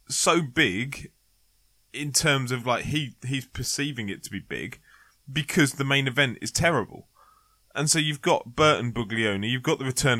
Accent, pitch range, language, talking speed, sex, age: British, 120-170 Hz, English, 170 wpm, male, 20-39